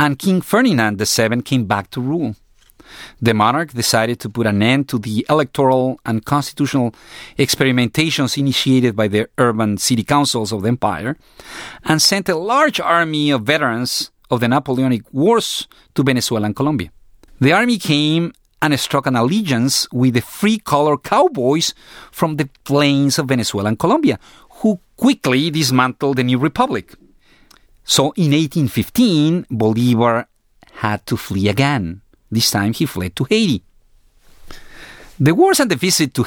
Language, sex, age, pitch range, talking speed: English, male, 40-59, 110-150 Hz, 150 wpm